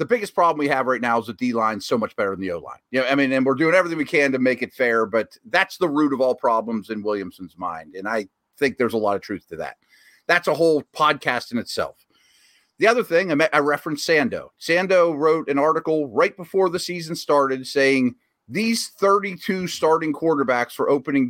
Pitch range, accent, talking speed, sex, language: 125-175 Hz, American, 220 wpm, male, English